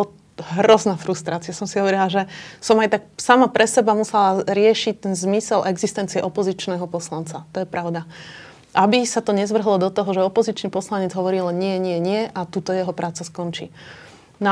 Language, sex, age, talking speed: Slovak, female, 30-49, 170 wpm